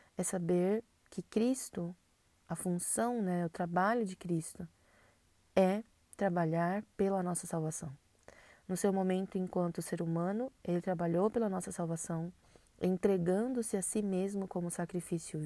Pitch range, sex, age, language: 165-190 Hz, female, 20-39, Portuguese